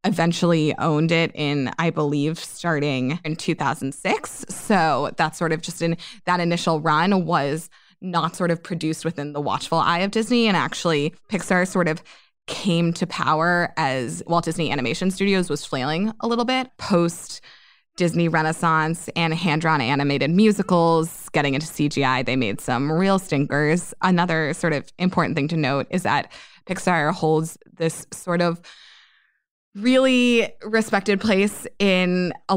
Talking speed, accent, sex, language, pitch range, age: 145 wpm, American, female, English, 155-185 Hz, 20-39